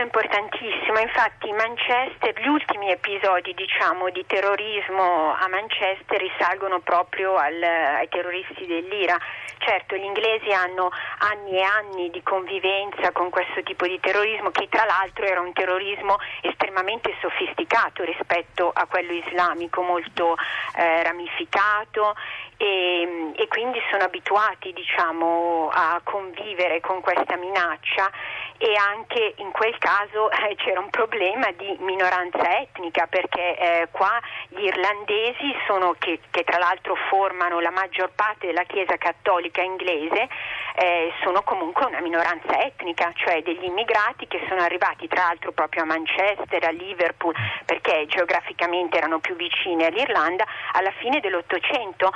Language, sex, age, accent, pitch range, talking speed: Italian, female, 40-59, native, 175-210 Hz, 130 wpm